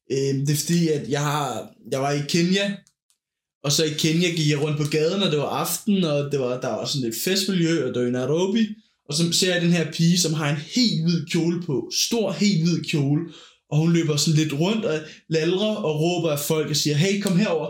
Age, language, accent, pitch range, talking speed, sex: 20-39, Danish, native, 150-195 Hz, 240 wpm, male